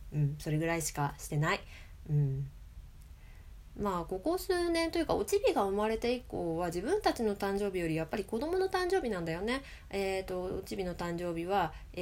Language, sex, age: Japanese, female, 20-39